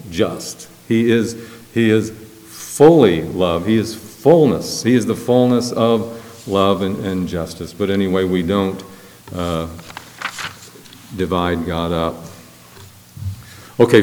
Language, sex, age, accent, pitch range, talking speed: English, male, 50-69, American, 95-125 Hz, 120 wpm